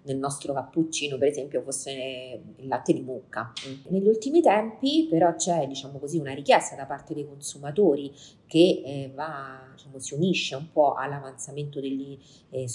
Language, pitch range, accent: Italian, 130-170 Hz, native